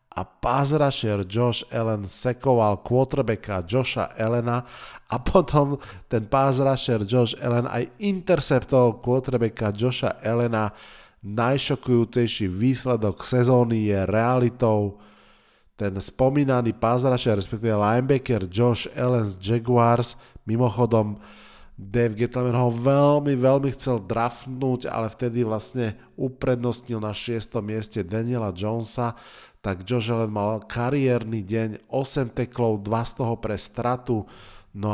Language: Slovak